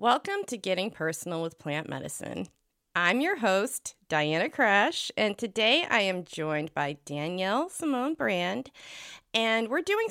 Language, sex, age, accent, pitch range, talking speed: English, female, 30-49, American, 170-235 Hz, 140 wpm